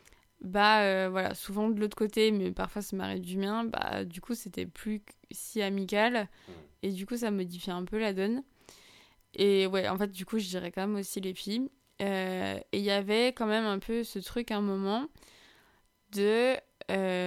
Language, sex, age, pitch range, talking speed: French, female, 20-39, 190-230 Hz, 200 wpm